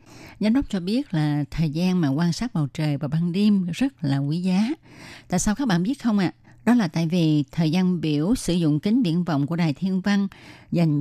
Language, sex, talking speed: Vietnamese, female, 235 wpm